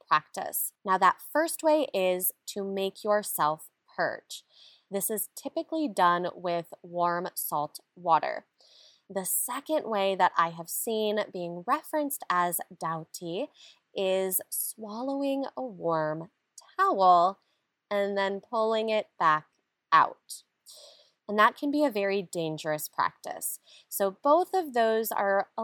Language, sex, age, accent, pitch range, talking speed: English, female, 20-39, American, 175-230 Hz, 125 wpm